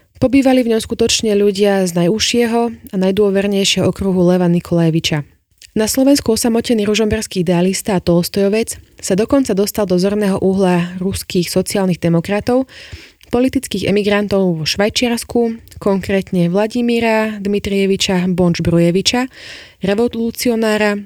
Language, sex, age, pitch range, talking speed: Slovak, female, 20-39, 180-220 Hz, 110 wpm